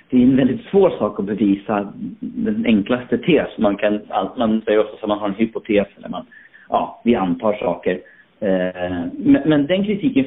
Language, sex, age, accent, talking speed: Swedish, male, 40-59, native, 165 wpm